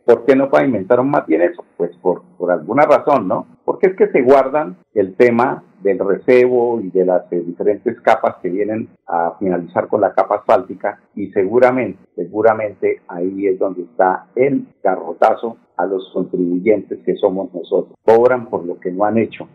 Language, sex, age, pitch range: Spanish, male, 50-69, 105-150 Hz